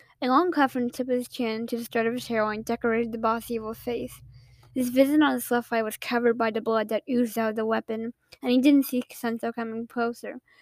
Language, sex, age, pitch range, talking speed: English, female, 10-29, 225-280 Hz, 250 wpm